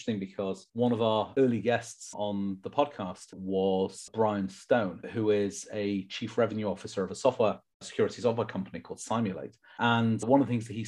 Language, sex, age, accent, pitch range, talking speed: English, male, 30-49, British, 100-120 Hz, 180 wpm